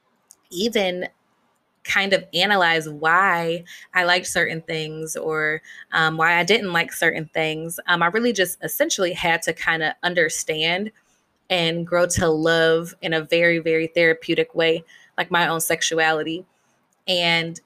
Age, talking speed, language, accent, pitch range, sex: 20-39, 145 wpm, English, American, 165-185 Hz, female